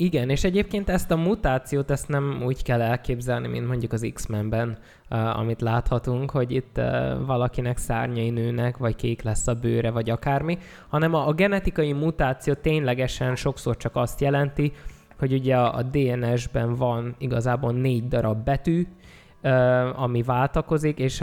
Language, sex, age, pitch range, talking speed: Hungarian, male, 20-39, 120-140 Hz, 145 wpm